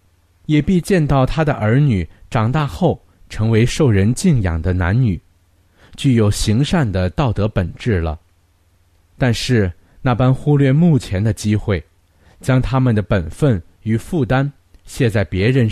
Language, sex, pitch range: Chinese, male, 90-130 Hz